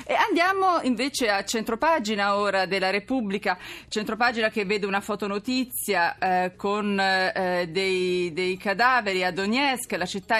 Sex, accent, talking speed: female, native, 135 wpm